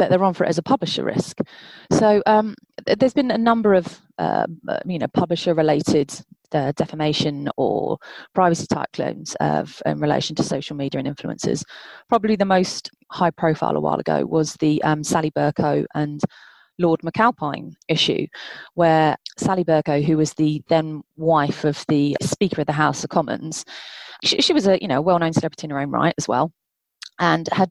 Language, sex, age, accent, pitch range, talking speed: English, female, 30-49, British, 150-185 Hz, 185 wpm